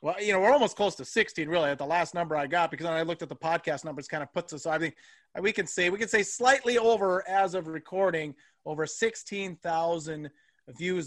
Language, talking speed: English, 240 wpm